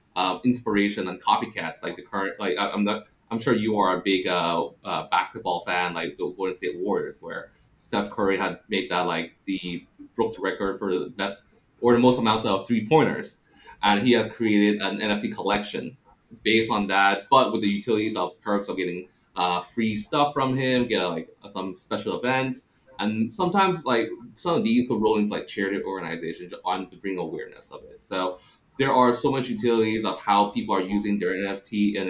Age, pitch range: 20-39, 95-115 Hz